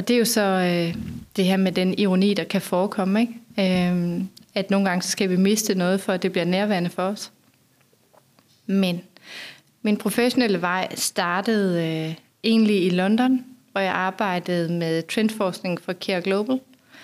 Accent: native